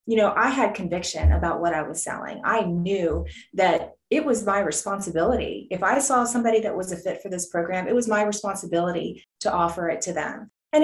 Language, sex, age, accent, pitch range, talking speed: English, female, 20-39, American, 180-230 Hz, 210 wpm